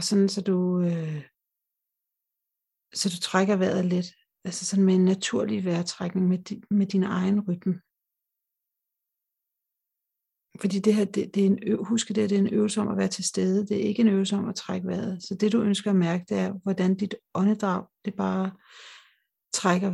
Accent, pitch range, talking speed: native, 185-210 Hz, 195 wpm